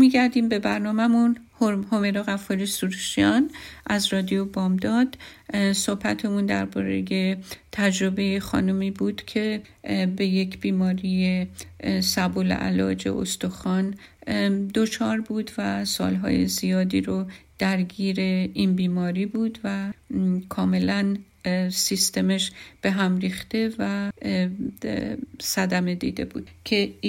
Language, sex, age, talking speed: Persian, female, 50-69, 95 wpm